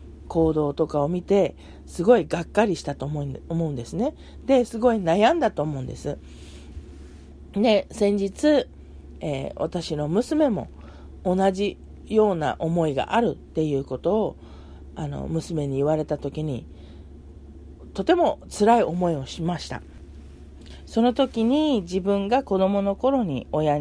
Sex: female